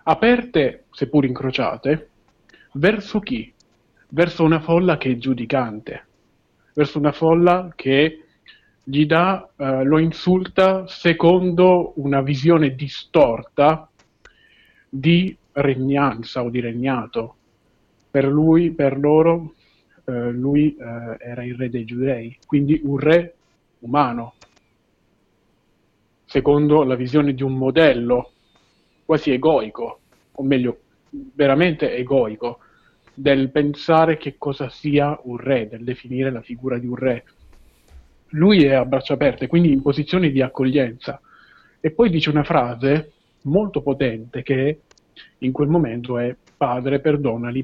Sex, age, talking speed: male, 40-59, 120 wpm